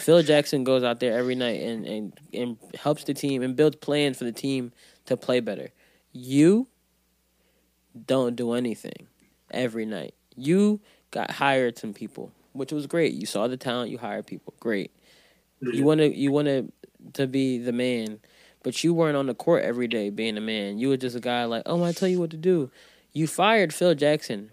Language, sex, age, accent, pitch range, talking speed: English, male, 20-39, American, 125-175 Hz, 195 wpm